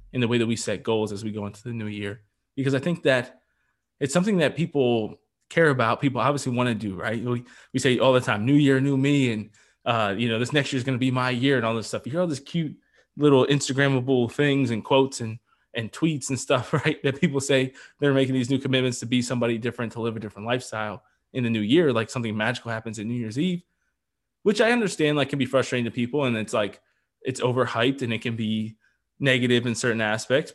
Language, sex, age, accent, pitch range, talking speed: English, male, 20-39, American, 115-140 Hz, 245 wpm